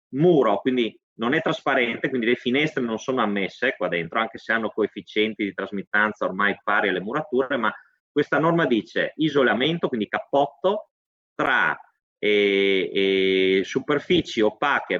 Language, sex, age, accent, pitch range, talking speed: Italian, male, 30-49, native, 105-165 Hz, 140 wpm